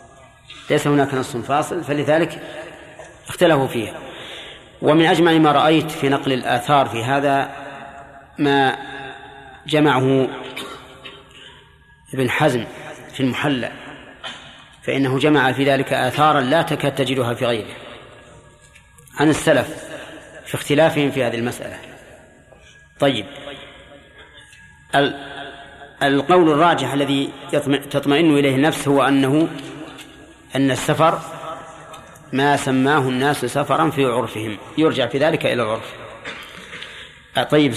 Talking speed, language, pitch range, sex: 100 wpm, Arabic, 135-155 Hz, male